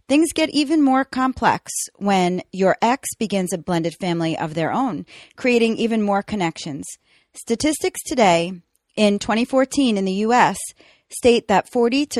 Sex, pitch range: female, 180-235 Hz